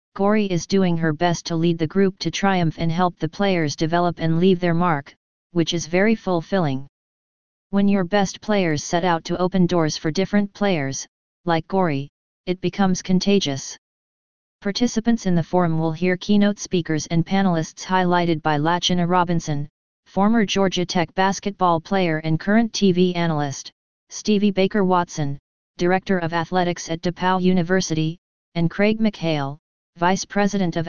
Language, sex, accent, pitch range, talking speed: English, female, American, 165-190 Hz, 155 wpm